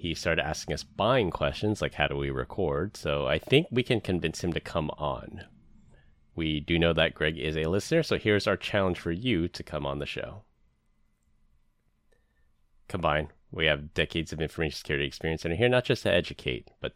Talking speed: 195 wpm